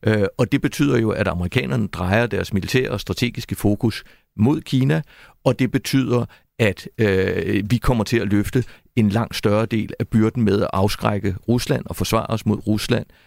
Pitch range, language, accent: 95-120 Hz, Danish, native